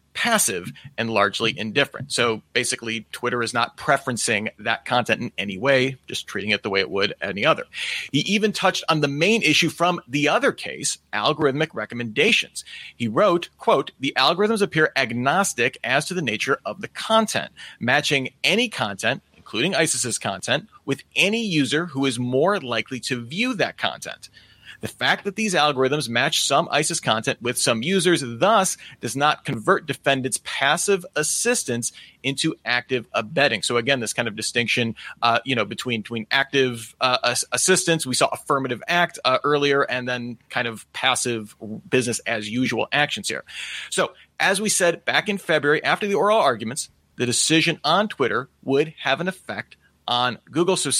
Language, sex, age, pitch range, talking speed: English, male, 30-49, 120-160 Hz, 165 wpm